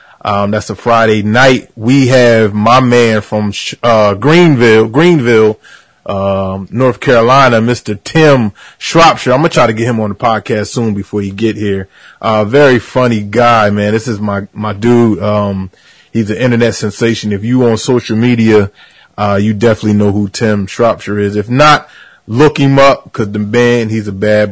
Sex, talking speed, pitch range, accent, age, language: male, 180 wpm, 105-130 Hz, American, 30-49, English